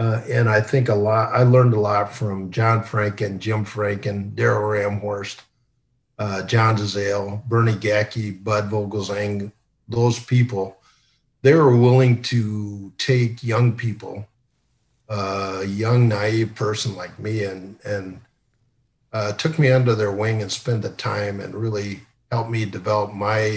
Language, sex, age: English, male, 50-69